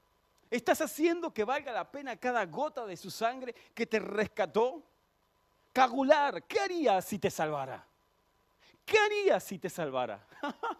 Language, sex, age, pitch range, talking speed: Spanish, male, 40-59, 170-235 Hz, 140 wpm